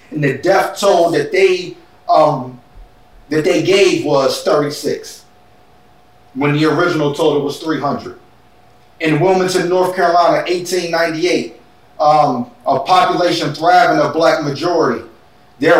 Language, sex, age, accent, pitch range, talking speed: English, male, 40-59, American, 155-190 Hz, 120 wpm